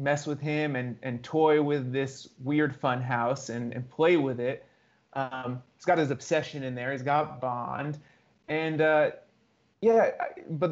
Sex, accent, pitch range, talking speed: male, American, 125-150 Hz, 175 wpm